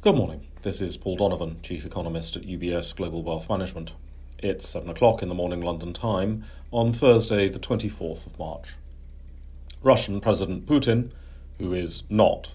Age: 40-59